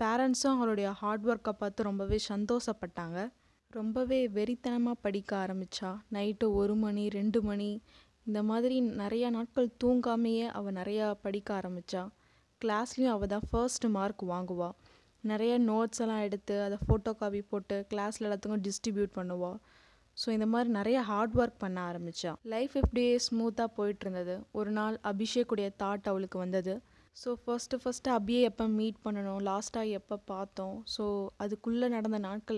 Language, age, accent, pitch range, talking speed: Tamil, 20-39, native, 195-230 Hz, 140 wpm